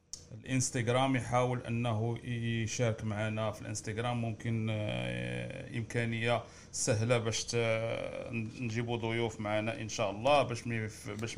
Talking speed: 100 wpm